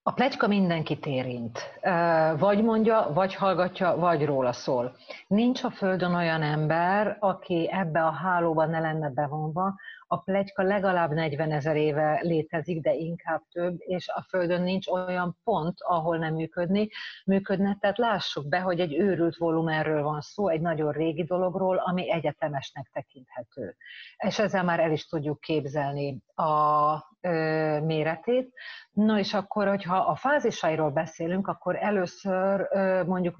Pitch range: 155-190 Hz